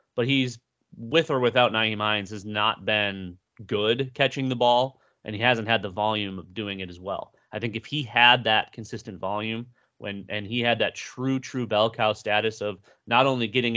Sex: male